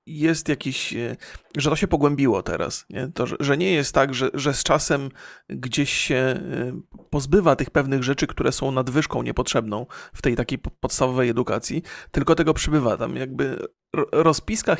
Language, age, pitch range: Polish, 40-59, 130-160 Hz